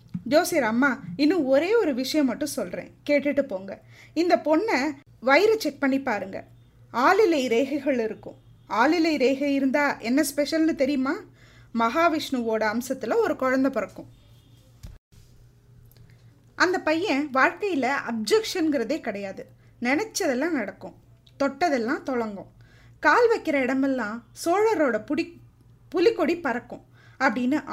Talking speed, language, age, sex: 100 wpm, Tamil, 20-39, female